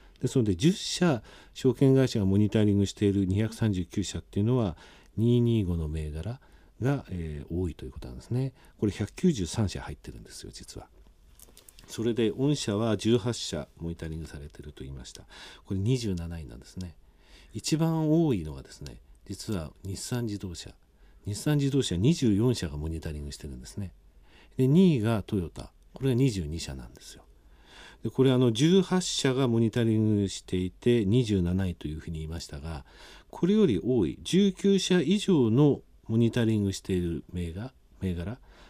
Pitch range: 80-130 Hz